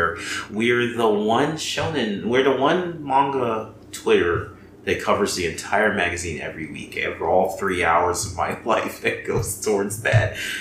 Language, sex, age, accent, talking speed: English, male, 30-49, American, 155 wpm